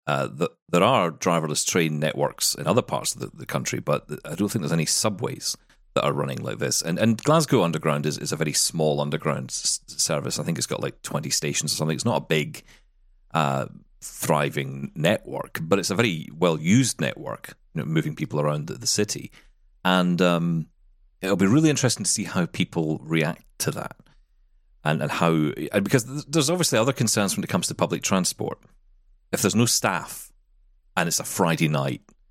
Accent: British